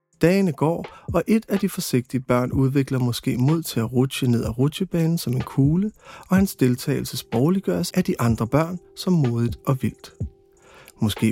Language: Danish